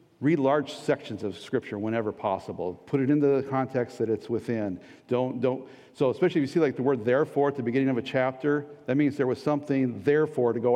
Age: 50-69